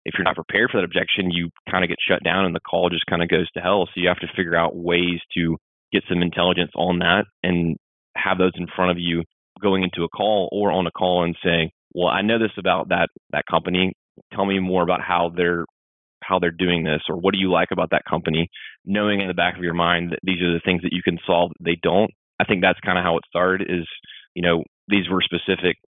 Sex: male